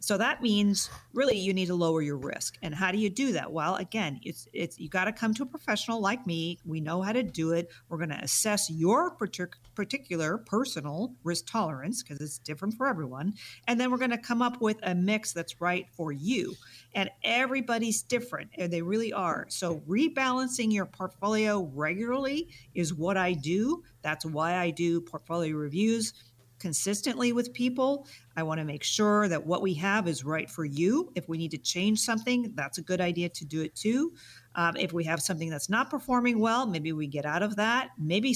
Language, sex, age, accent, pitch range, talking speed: English, female, 50-69, American, 160-220 Hz, 205 wpm